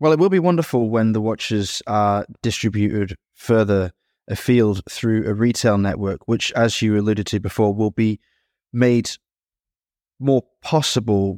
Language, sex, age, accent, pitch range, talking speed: English, male, 20-39, British, 100-115 Hz, 140 wpm